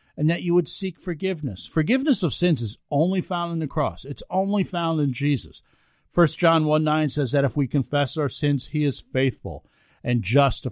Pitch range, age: 115-155 Hz, 50-69